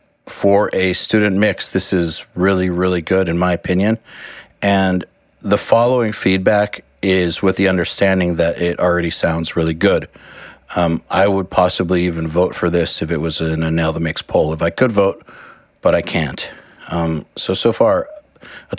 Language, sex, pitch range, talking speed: English, male, 85-105 Hz, 175 wpm